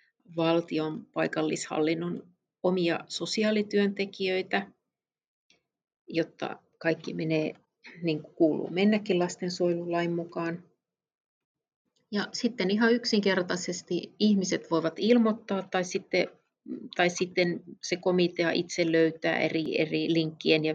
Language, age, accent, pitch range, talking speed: Finnish, 30-49, native, 165-190 Hz, 95 wpm